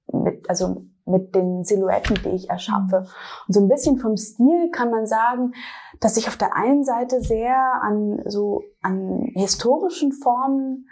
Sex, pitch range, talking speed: female, 205-250 Hz, 160 wpm